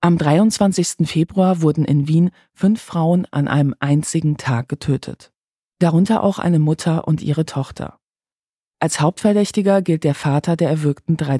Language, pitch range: German, 145-175 Hz